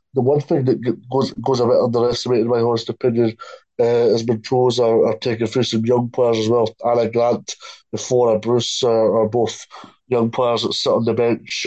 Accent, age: British, 20-39